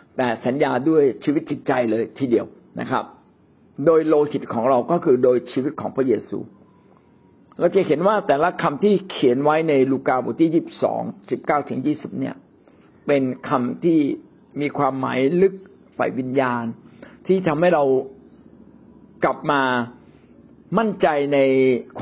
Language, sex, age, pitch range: Thai, male, 60-79, 130-180 Hz